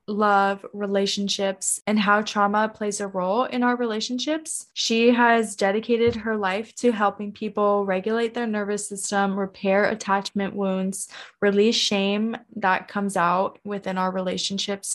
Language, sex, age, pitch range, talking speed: English, female, 20-39, 190-215 Hz, 135 wpm